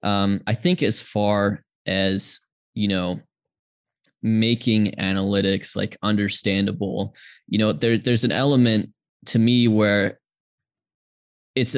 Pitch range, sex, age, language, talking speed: 95-115 Hz, male, 20-39, English, 110 wpm